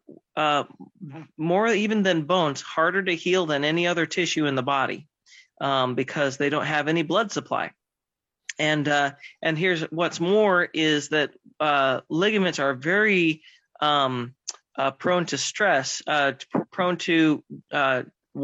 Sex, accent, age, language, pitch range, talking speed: male, American, 30-49, English, 145-175 Hz, 150 wpm